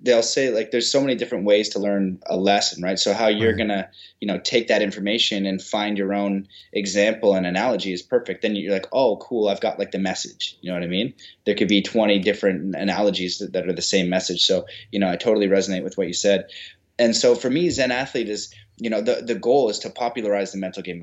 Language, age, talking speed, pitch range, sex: English, 20-39, 250 wpm, 95-115 Hz, male